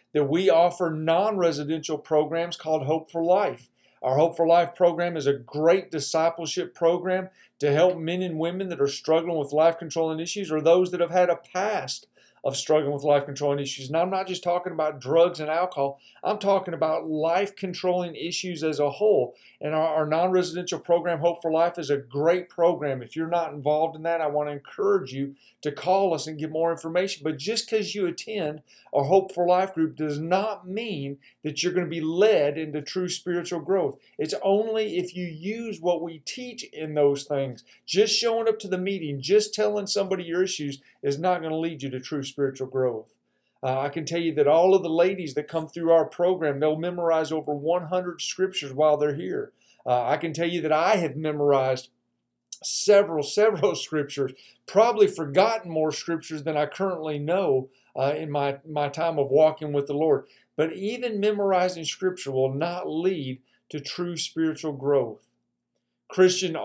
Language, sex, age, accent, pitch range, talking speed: English, male, 50-69, American, 150-180 Hz, 190 wpm